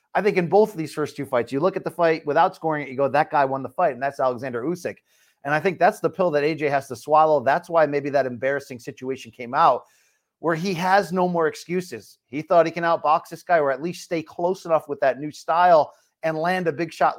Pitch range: 145-180 Hz